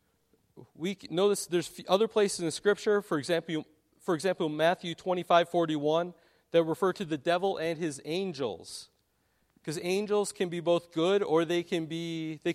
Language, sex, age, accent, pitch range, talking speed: English, male, 40-59, American, 150-185 Hz, 170 wpm